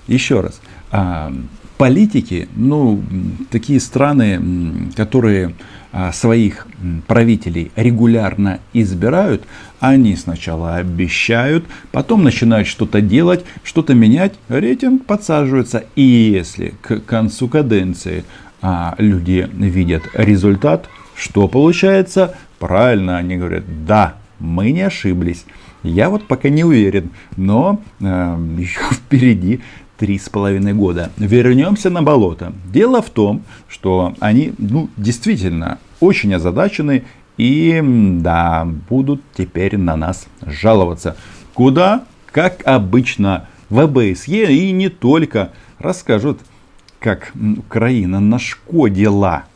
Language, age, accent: Russian, 50-69, native